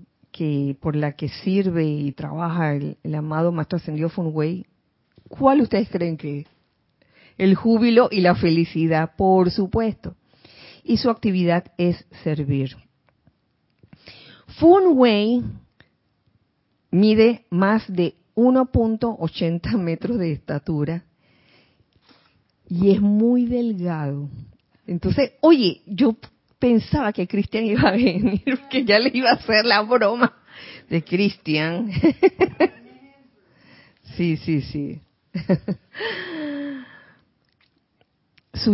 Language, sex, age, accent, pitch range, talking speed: Spanish, female, 40-59, American, 155-220 Hz, 100 wpm